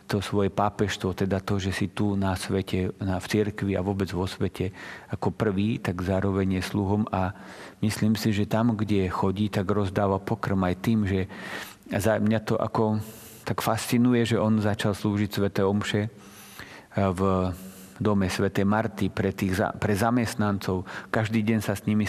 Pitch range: 100-110 Hz